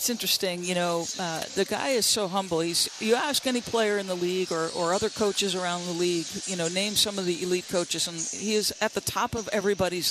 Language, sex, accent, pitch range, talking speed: English, female, American, 175-210 Hz, 235 wpm